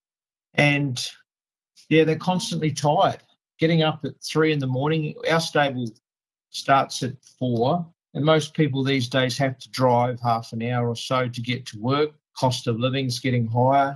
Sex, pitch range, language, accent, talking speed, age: male, 120-150 Hz, English, Australian, 170 wpm, 50-69